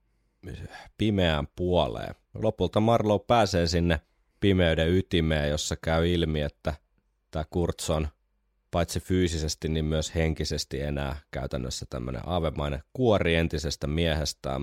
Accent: native